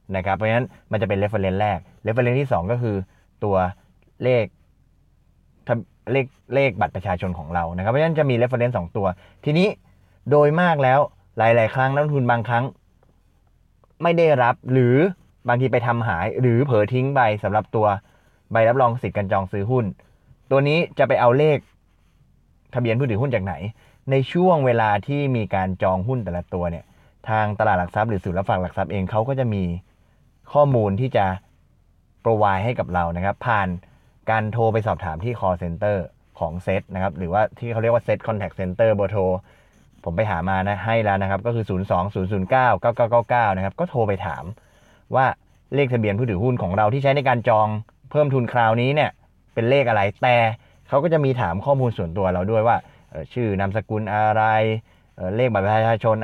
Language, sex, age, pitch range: Thai, male, 20-39, 95-125 Hz